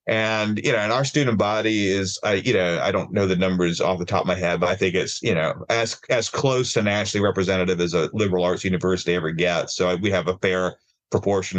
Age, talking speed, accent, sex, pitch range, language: 30-49, 250 wpm, American, male, 95-115 Hz, English